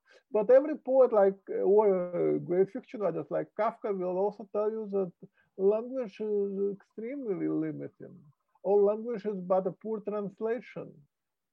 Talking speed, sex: 135 wpm, male